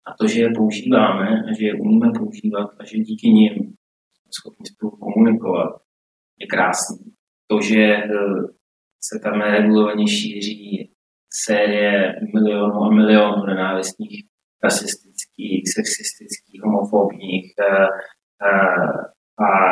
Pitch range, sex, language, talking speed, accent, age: 100-115 Hz, male, Czech, 105 wpm, native, 20-39